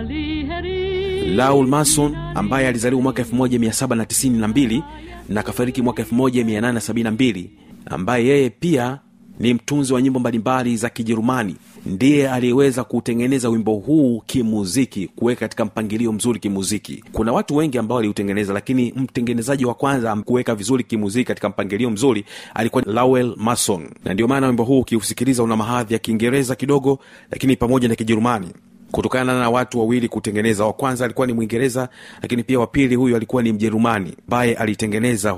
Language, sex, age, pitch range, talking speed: Swahili, male, 40-59, 110-130 Hz, 145 wpm